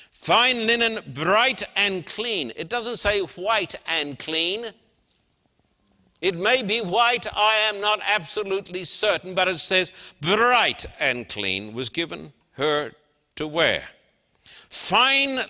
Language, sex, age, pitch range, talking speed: English, male, 60-79, 175-230 Hz, 125 wpm